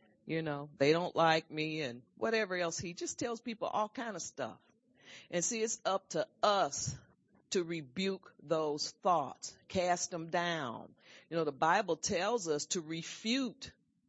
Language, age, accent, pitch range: English, 40-59, American, 165-220 Hz